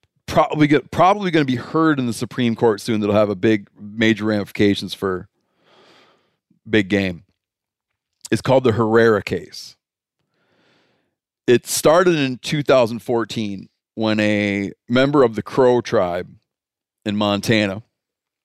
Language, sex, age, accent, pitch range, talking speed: English, male, 40-59, American, 105-125 Hz, 125 wpm